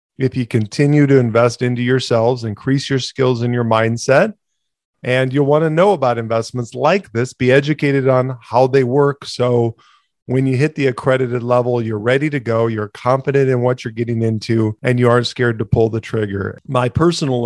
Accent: American